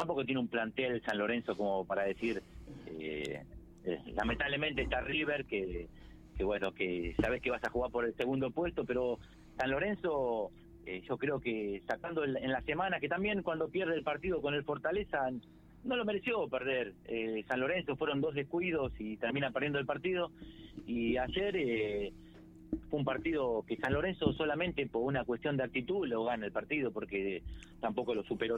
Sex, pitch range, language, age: male, 110-155 Hz, Spanish, 40-59